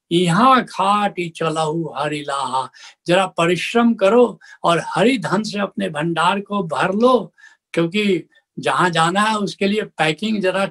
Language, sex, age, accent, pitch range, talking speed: Hindi, male, 70-89, native, 155-205 Hz, 135 wpm